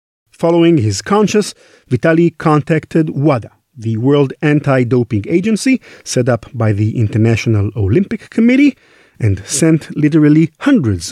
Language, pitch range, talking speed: English, 110-170 Hz, 115 wpm